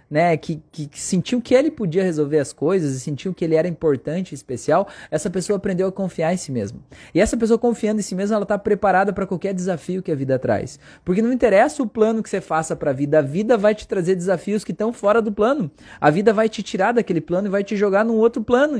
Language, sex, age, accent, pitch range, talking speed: Portuguese, male, 20-39, Brazilian, 170-220 Hz, 250 wpm